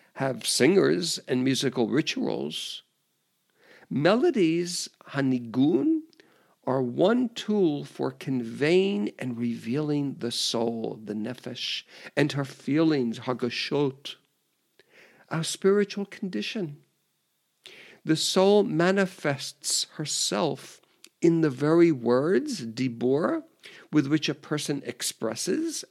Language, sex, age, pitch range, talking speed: English, male, 60-79, 130-185 Hz, 90 wpm